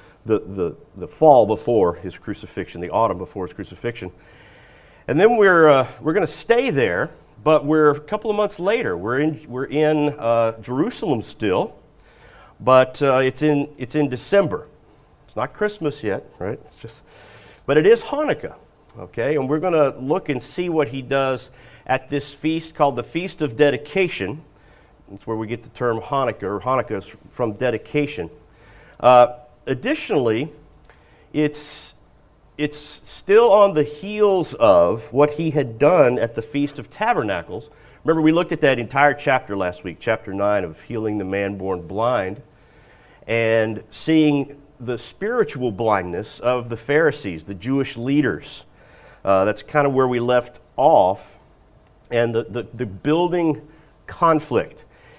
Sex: male